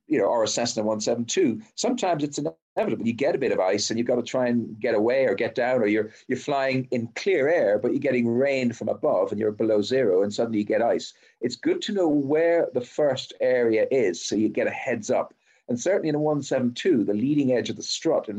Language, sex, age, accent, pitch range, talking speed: English, male, 50-69, British, 110-165 Hz, 245 wpm